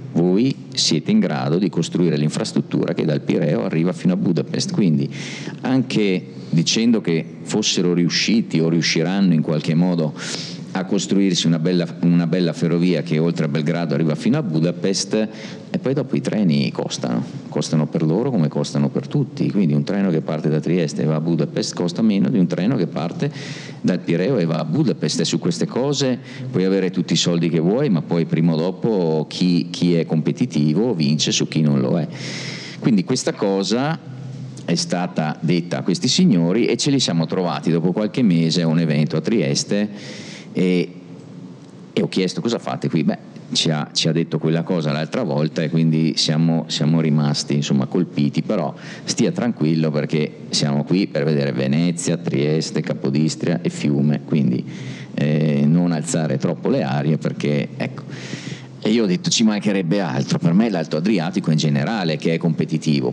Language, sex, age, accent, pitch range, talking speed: Italian, male, 50-69, native, 75-90 Hz, 175 wpm